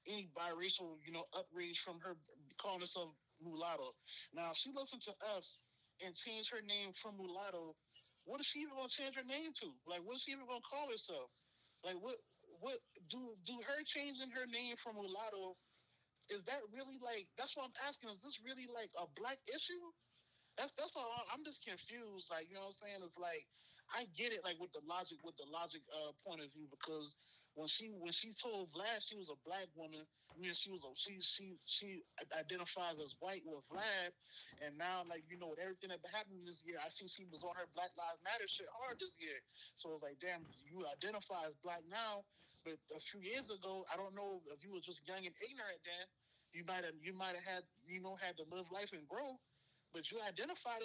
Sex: male